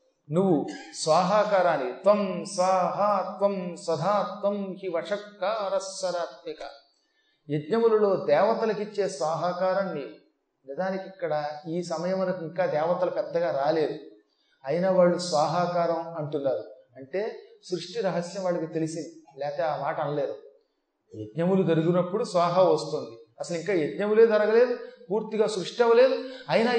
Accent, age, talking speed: native, 30-49, 95 wpm